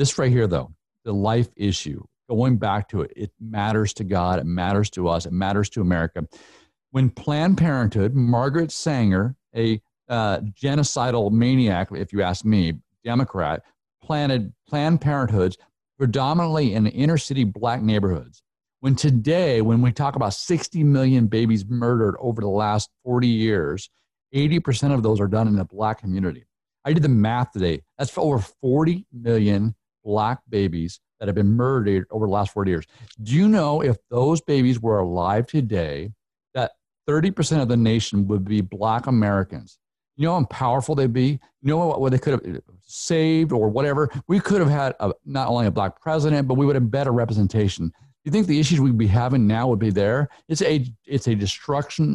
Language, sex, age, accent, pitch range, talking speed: English, male, 50-69, American, 100-140 Hz, 180 wpm